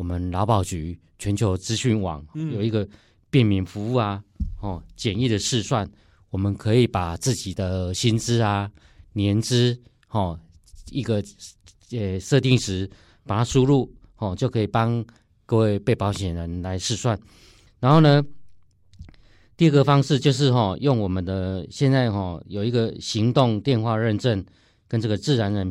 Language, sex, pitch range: Chinese, male, 95-120 Hz